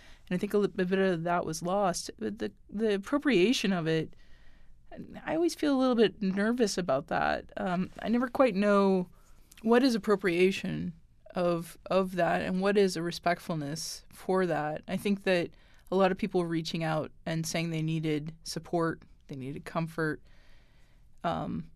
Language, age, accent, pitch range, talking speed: English, 20-39, American, 160-190 Hz, 170 wpm